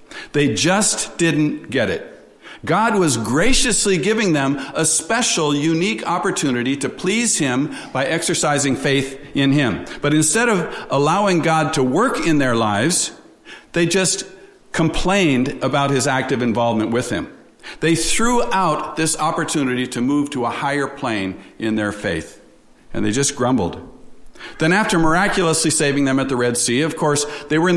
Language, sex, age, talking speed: English, male, 50-69, 160 wpm